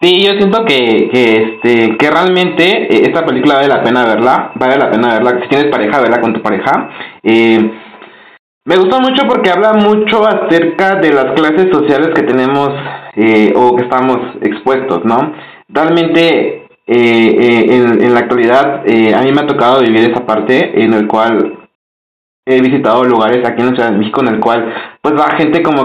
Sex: male